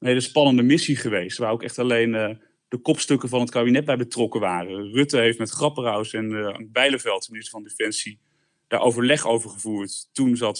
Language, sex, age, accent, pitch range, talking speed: Dutch, male, 30-49, Dutch, 120-150 Hz, 200 wpm